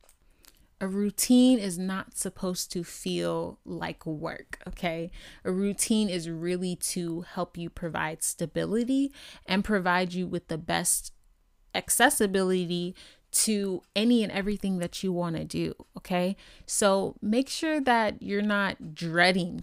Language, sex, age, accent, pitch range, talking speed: English, female, 20-39, American, 170-215 Hz, 130 wpm